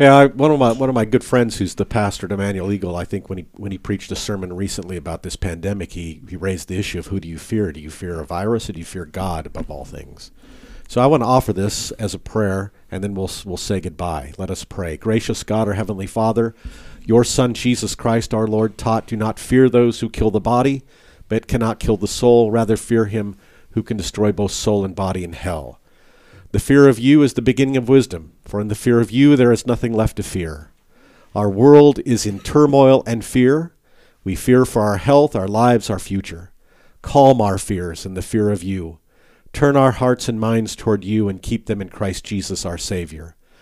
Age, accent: 50-69, American